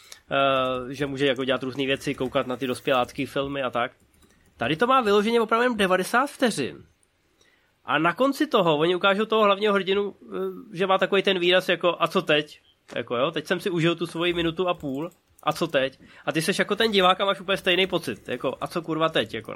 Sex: male